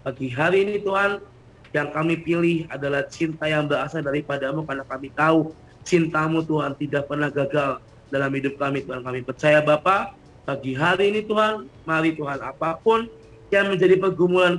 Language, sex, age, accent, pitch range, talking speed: Indonesian, male, 20-39, native, 140-160 Hz, 155 wpm